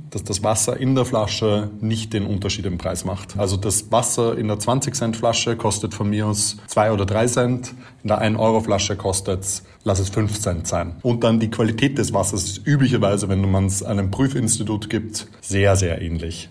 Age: 30-49